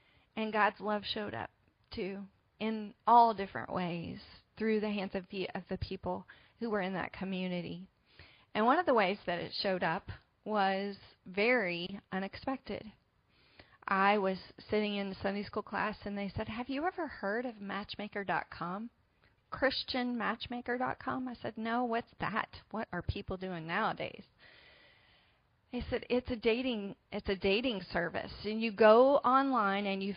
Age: 30-49